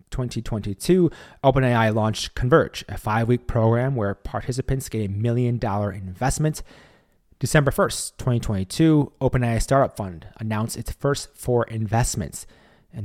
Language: English